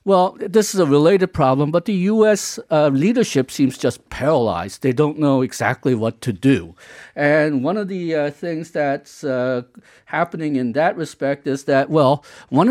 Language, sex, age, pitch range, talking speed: English, male, 50-69, 130-165 Hz, 175 wpm